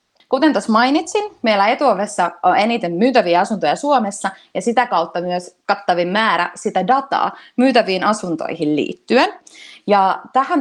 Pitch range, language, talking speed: 175-245 Hz, Finnish, 130 wpm